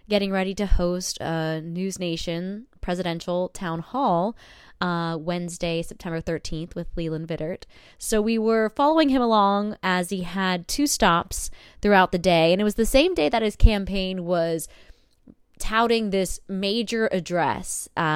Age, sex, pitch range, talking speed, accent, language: 20-39, female, 175-220 Hz, 150 wpm, American, English